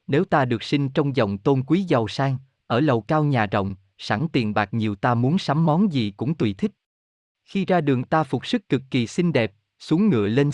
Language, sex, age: Vietnamese, male, 20-39